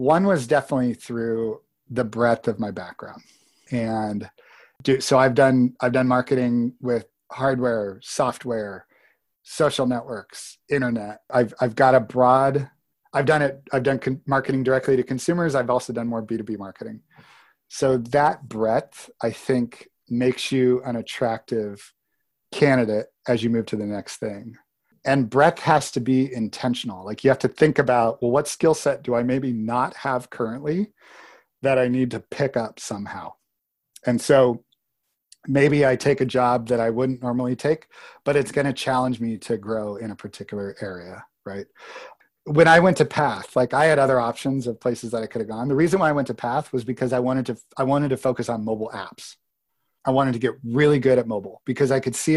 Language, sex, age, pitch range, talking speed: English, male, 40-59, 115-140 Hz, 185 wpm